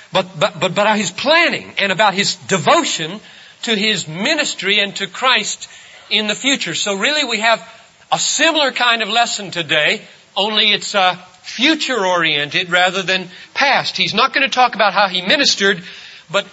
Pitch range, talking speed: 145-215 Hz, 165 wpm